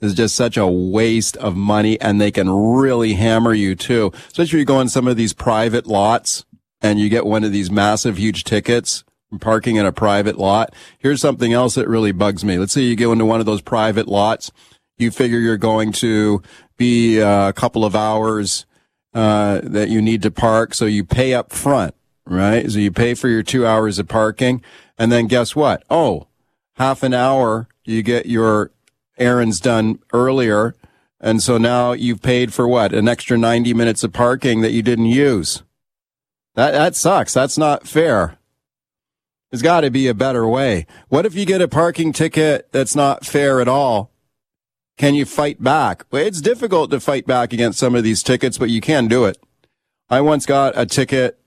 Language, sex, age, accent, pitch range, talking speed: English, male, 40-59, American, 110-130 Hz, 195 wpm